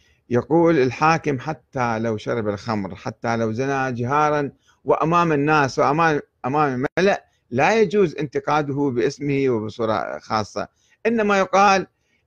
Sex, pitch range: male, 120-160 Hz